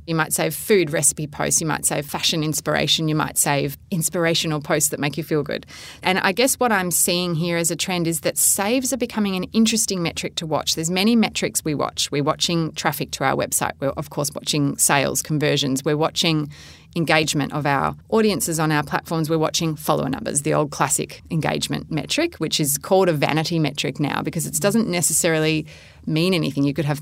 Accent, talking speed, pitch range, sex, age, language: Australian, 205 wpm, 155-185 Hz, female, 30-49, English